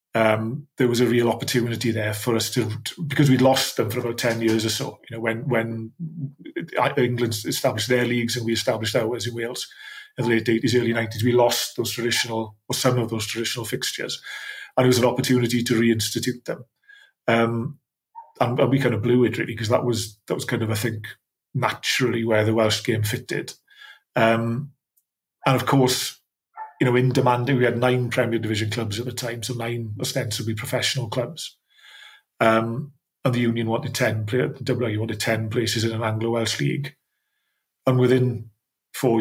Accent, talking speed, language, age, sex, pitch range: British, 190 wpm, English, 30-49, male, 115-130 Hz